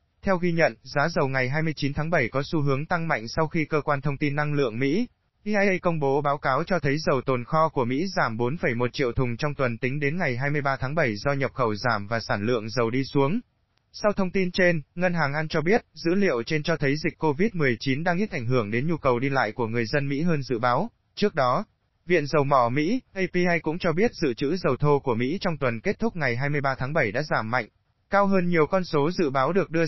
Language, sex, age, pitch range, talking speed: Vietnamese, male, 20-39, 130-170 Hz, 250 wpm